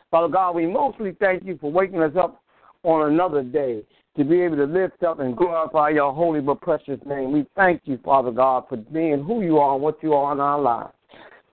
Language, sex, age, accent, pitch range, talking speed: English, male, 60-79, American, 145-180 Hz, 225 wpm